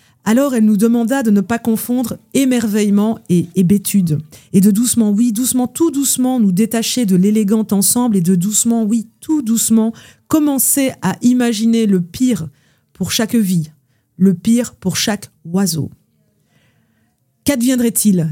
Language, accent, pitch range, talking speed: French, French, 190-240 Hz, 140 wpm